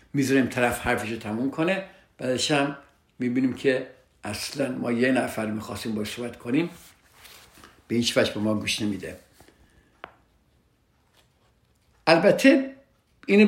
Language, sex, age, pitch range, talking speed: Persian, male, 60-79, 115-150 Hz, 110 wpm